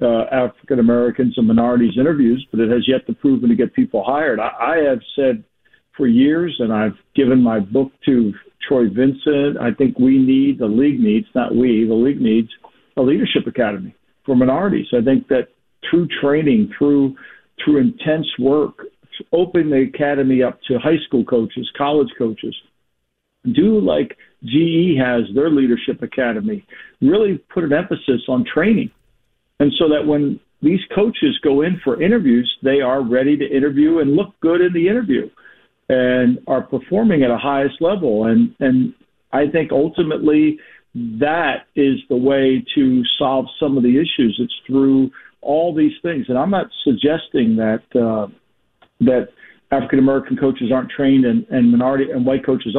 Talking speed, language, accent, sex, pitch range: 165 wpm, English, American, male, 125-180 Hz